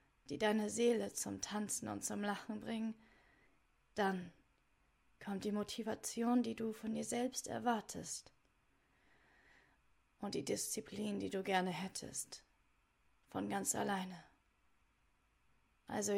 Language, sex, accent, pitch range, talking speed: German, female, German, 190-225 Hz, 110 wpm